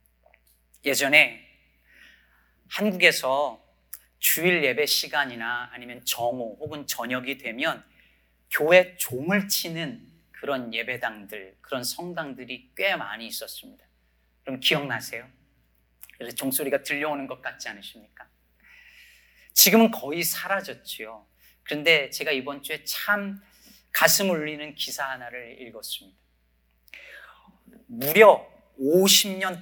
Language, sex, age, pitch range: Korean, male, 40-59, 110-180 Hz